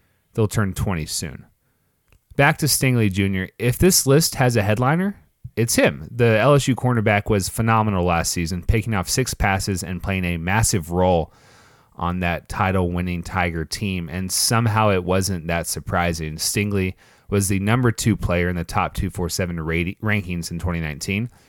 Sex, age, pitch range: male, 30-49, 90-110 Hz